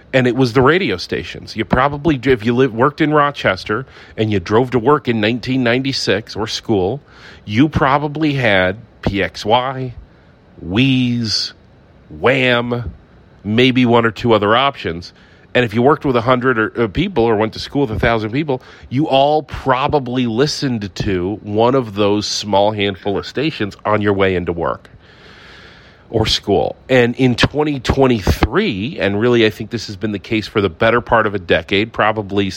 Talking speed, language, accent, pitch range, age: 165 wpm, English, American, 105-135 Hz, 40-59